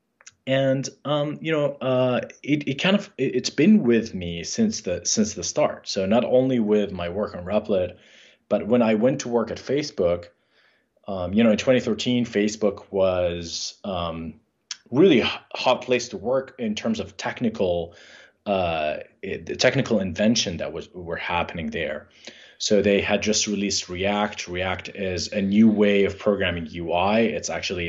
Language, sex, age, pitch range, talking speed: English, male, 20-39, 95-125 Hz, 170 wpm